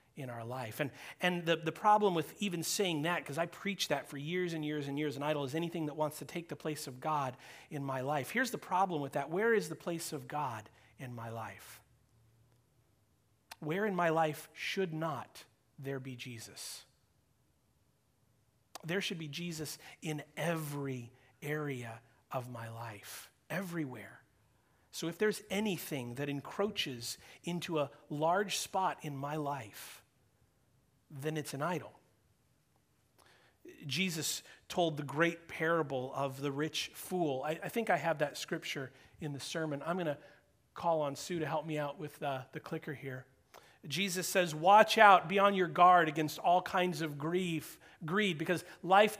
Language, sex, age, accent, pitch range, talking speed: English, male, 40-59, American, 135-175 Hz, 170 wpm